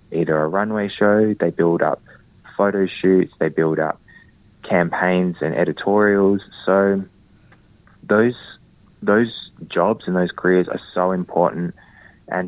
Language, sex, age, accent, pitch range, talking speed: English, male, 20-39, Australian, 80-90 Hz, 125 wpm